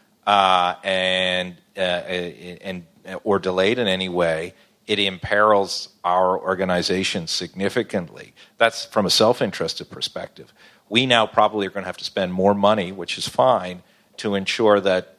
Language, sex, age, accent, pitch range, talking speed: English, male, 50-69, American, 95-105 Hz, 145 wpm